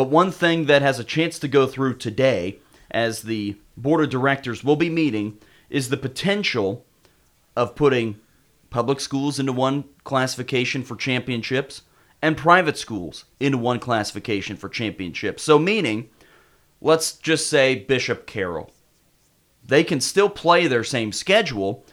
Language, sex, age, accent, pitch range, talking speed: English, male, 30-49, American, 115-145 Hz, 145 wpm